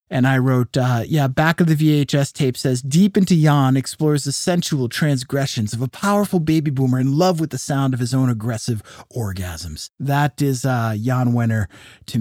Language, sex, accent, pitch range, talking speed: English, male, American, 125-160 Hz, 190 wpm